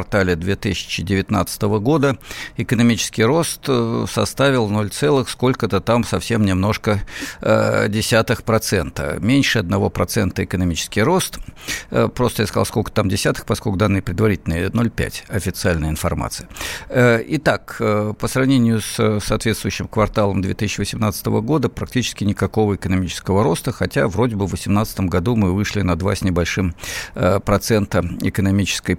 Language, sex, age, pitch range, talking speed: Russian, male, 50-69, 95-115 Hz, 115 wpm